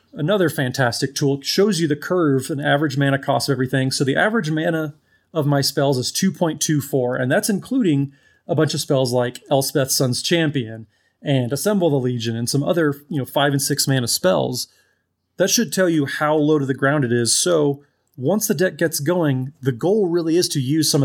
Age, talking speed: 30-49, 200 wpm